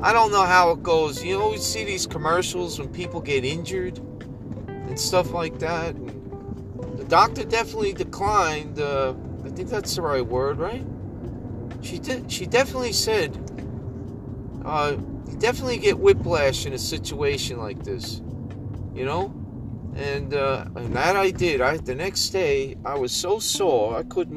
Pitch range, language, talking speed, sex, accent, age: 110-180 Hz, English, 165 wpm, male, American, 40-59